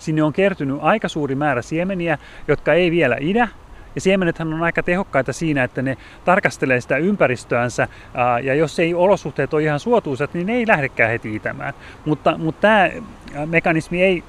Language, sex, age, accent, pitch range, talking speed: Finnish, male, 30-49, native, 140-185 Hz, 170 wpm